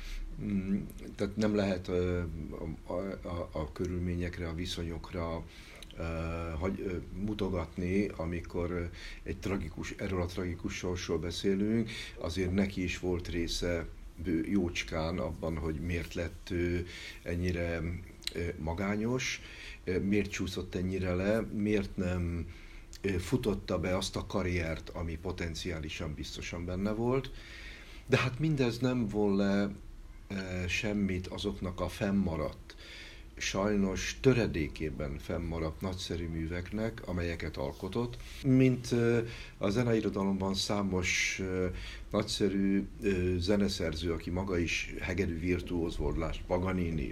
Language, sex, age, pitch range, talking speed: Hungarian, male, 60-79, 85-100 Hz, 95 wpm